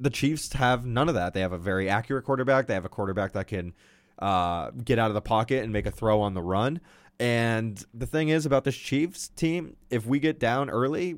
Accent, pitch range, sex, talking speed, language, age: American, 105-130 Hz, male, 235 wpm, English, 20-39